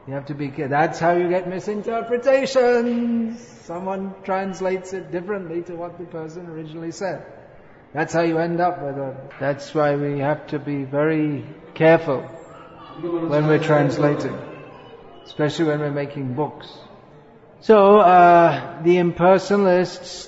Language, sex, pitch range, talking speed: English, male, 150-175 Hz, 140 wpm